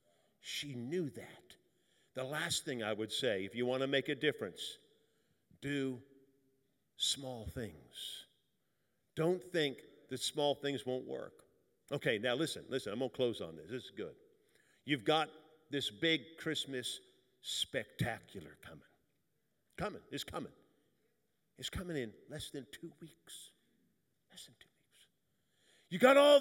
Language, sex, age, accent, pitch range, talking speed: English, male, 50-69, American, 125-175 Hz, 145 wpm